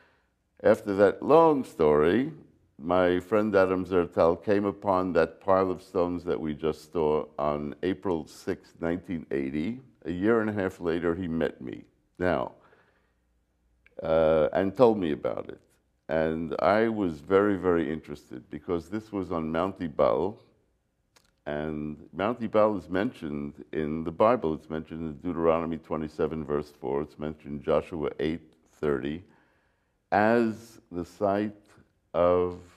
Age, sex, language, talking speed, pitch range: 60-79, male, English, 135 wpm, 75-95 Hz